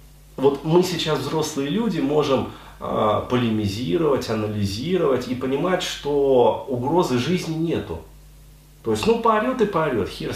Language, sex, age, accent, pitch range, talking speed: Russian, male, 30-49, native, 130-160 Hz, 125 wpm